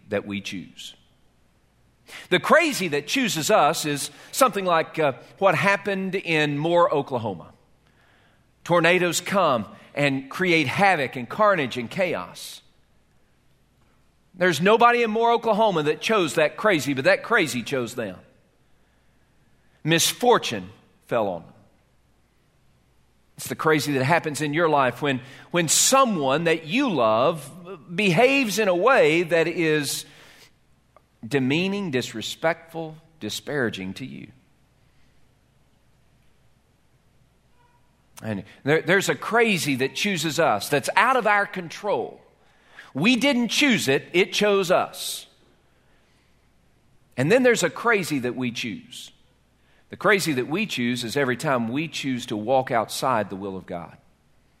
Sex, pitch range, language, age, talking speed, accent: male, 130-190 Hz, English, 40-59, 125 wpm, American